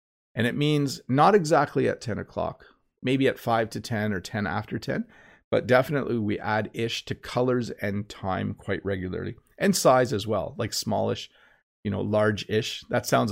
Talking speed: 180 wpm